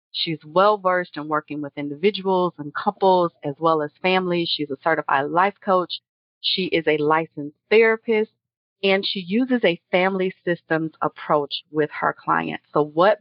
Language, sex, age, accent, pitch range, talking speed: English, female, 40-59, American, 150-175 Hz, 160 wpm